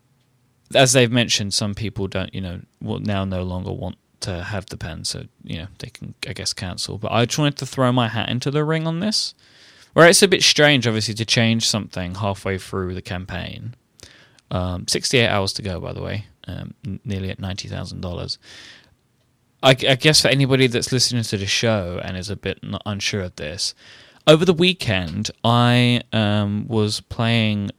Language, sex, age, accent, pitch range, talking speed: English, male, 20-39, British, 95-125 Hz, 190 wpm